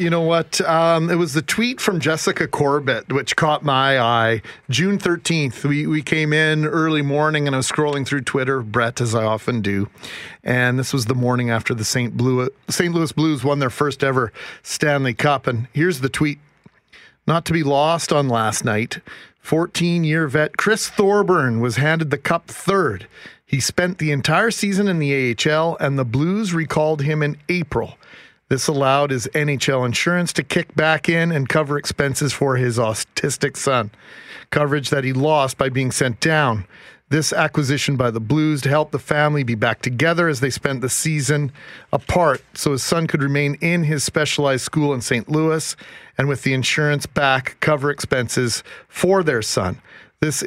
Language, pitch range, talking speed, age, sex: English, 130-160 Hz, 180 wpm, 40-59, male